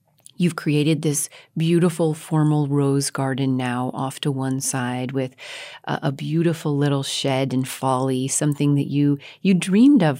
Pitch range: 135-160 Hz